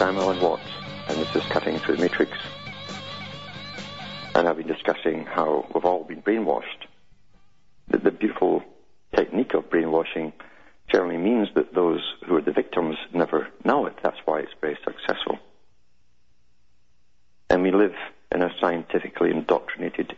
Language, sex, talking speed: English, male, 145 wpm